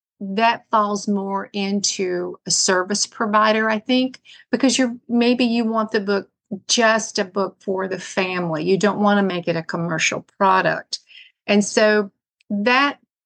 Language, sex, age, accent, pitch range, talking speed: English, female, 50-69, American, 190-225 Hz, 155 wpm